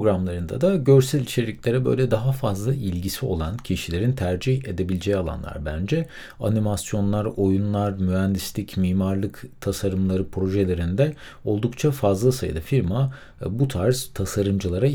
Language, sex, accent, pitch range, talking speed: Turkish, male, native, 95-135 Hz, 110 wpm